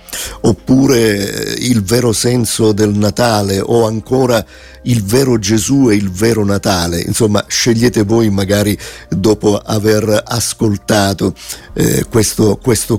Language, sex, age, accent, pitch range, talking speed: Italian, male, 50-69, native, 100-125 Hz, 115 wpm